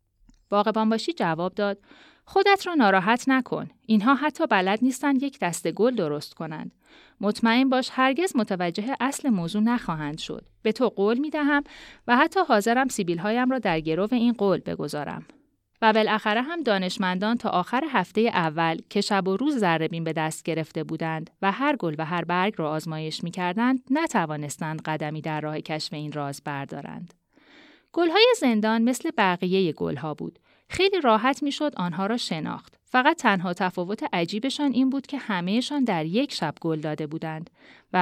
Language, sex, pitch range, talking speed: Persian, female, 170-260 Hz, 160 wpm